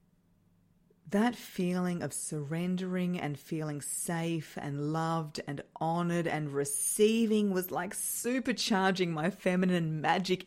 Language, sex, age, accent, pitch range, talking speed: English, female, 30-49, Australian, 160-200 Hz, 110 wpm